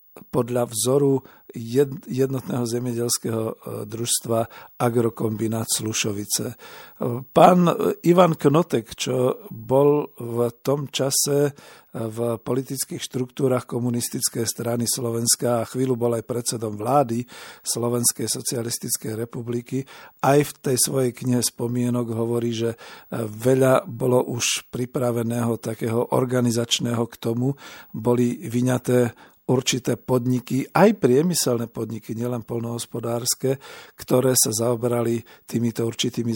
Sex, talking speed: male, 100 wpm